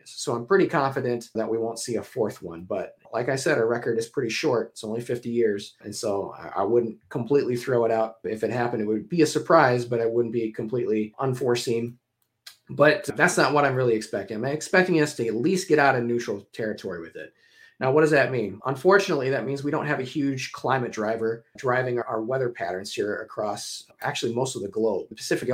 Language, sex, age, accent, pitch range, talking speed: English, male, 30-49, American, 115-135 Hz, 220 wpm